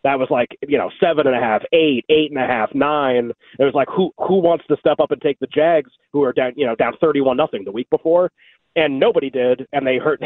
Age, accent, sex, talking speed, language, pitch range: 30-49, American, male, 265 wpm, English, 135-170 Hz